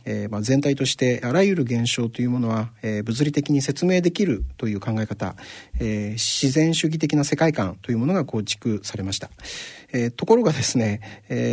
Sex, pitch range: male, 105-150 Hz